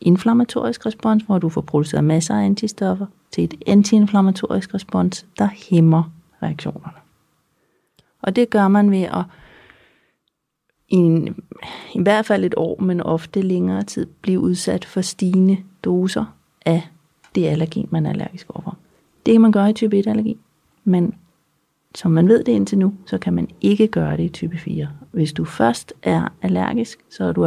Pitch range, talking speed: 160-205 Hz, 165 wpm